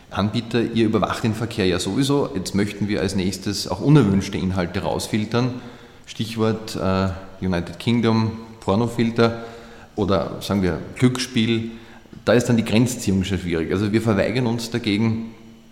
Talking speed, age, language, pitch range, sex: 135 wpm, 30-49, German, 95-110 Hz, male